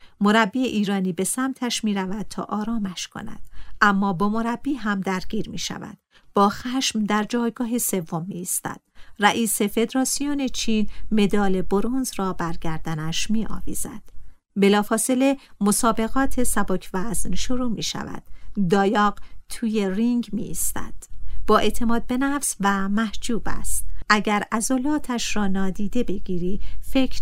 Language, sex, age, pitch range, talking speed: Persian, female, 50-69, 185-235 Hz, 125 wpm